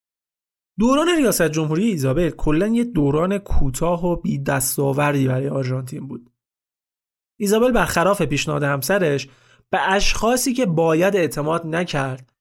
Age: 30-49